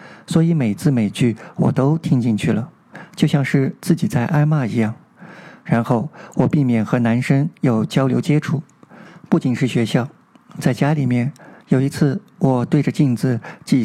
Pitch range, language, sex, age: 120-165 Hz, Chinese, male, 50-69